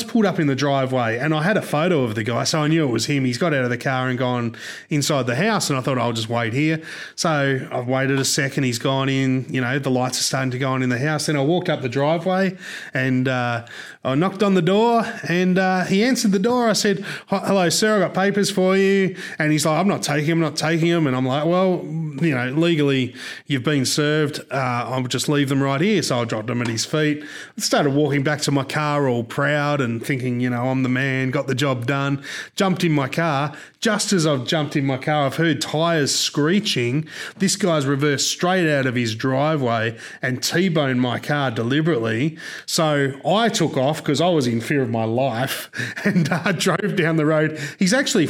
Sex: male